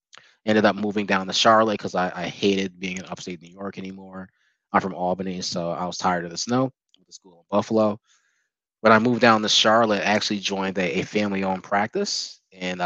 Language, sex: English, male